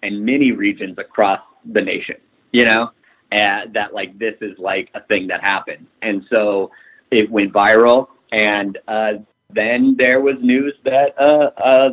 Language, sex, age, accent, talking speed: English, male, 30-49, American, 150 wpm